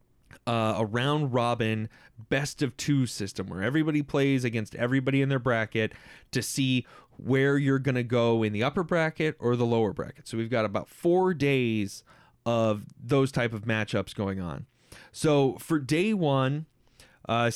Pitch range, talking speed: 115-150 Hz, 165 wpm